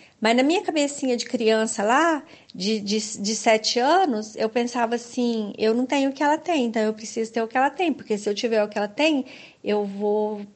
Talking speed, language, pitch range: 225 wpm, Portuguese, 220-260 Hz